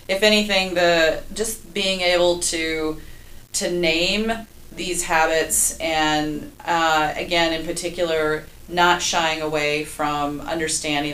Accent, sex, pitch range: American, female, 145-175 Hz